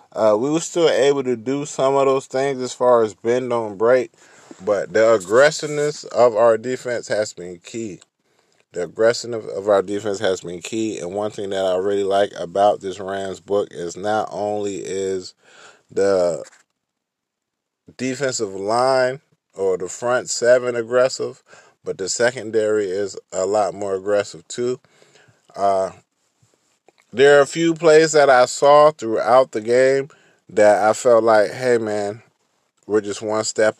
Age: 20-39